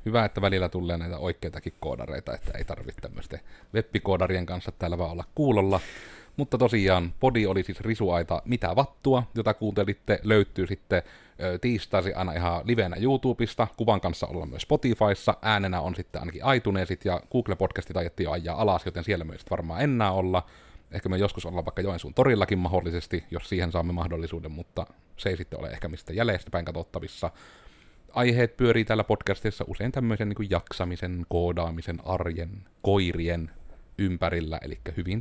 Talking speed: 155 wpm